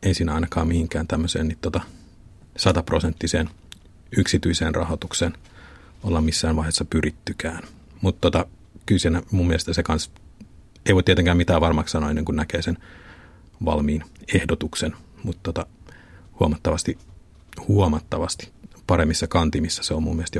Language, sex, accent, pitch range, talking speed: Finnish, male, native, 80-90 Hz, 120 wpm